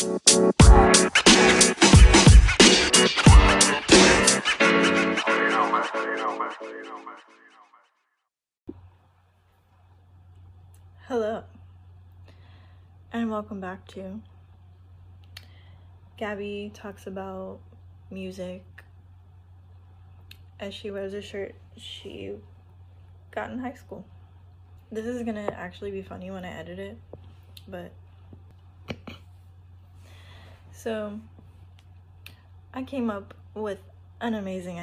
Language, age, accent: English, 20-39, American